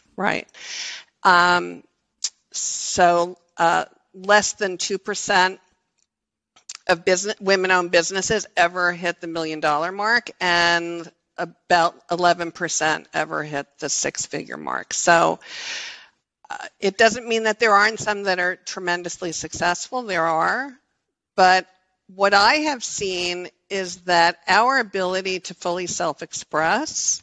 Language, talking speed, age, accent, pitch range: English, 110 wpm, 50-69, American, 170-200 Hz